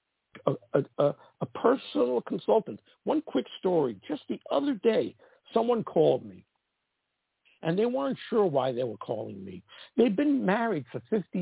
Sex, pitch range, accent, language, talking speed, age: male, 150-235 Hz, American, English, 160 wpm, 60-79